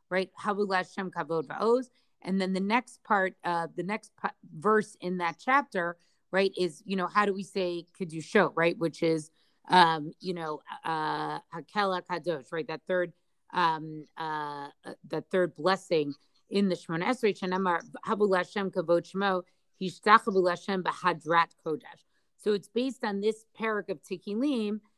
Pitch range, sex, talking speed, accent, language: 170-205 Hz, female, 140 wpm, American, English